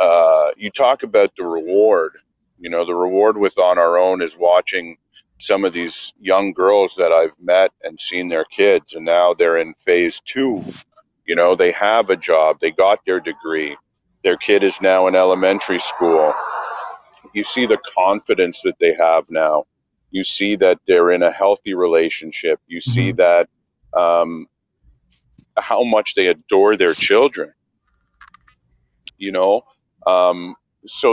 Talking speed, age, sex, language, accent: 155 wpm, 40-59, male, English, American